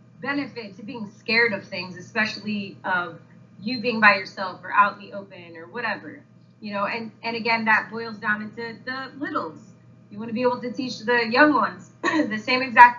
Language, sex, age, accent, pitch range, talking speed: English, female, 20-39, American, 210-305 Hz, 200 wpm